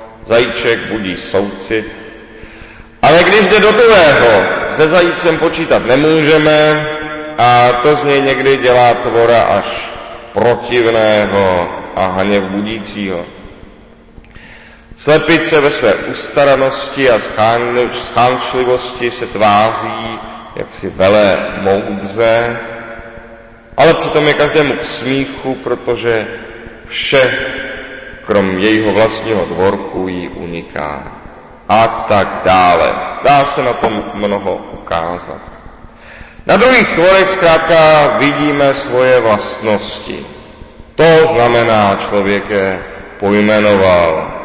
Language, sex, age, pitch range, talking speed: Czech, male, 40-59, 100-140 Hz, 95 wpm